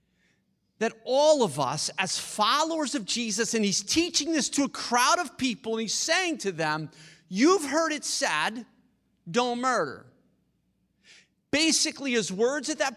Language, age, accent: English, 40-59, American